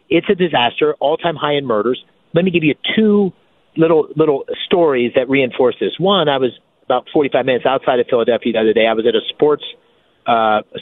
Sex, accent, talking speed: male, American, 215 wpm